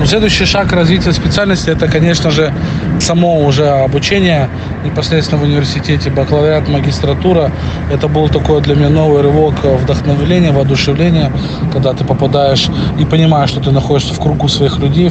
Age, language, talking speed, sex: 20-39, Russian, 145 wpm, male